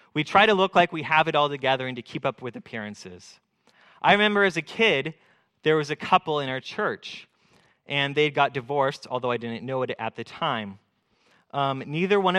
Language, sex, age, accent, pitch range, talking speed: English, male, 30-49, American, 130-165 Hz, 215 wpm